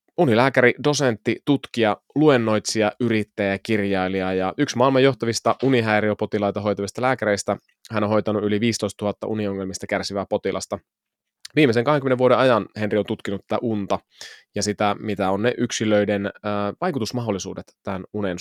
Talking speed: 135 wpm